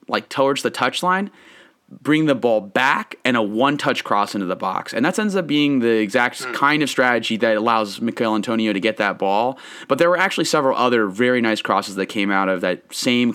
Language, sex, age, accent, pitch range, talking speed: English, male, 30-49, American, 105-130 Hz, 215 wpm